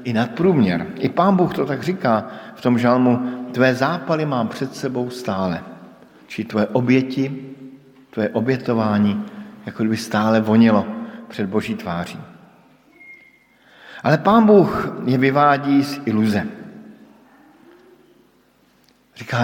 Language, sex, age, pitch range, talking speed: Slovak, male, 50-69, 110-145 Hz, 115 wpm